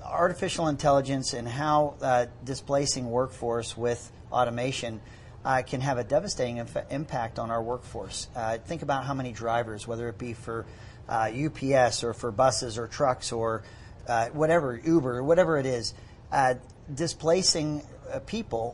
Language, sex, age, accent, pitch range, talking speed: English, male, 40-59, American, 120-140 Hz, 145 wpm